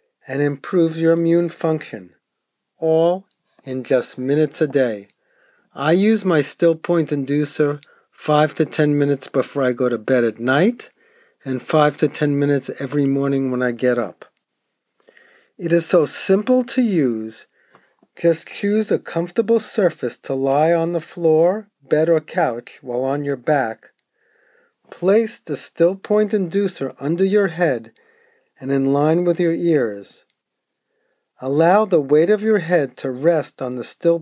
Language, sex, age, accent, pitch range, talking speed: English, male, 40-59, American, 140-185 Hz, 155 wpm